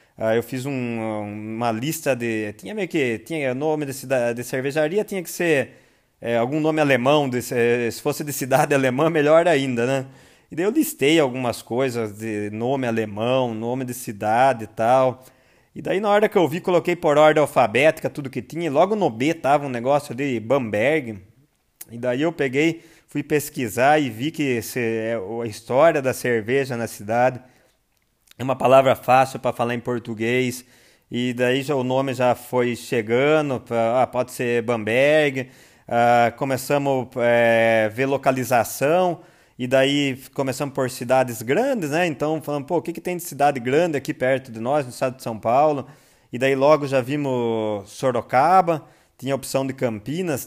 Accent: Brazilian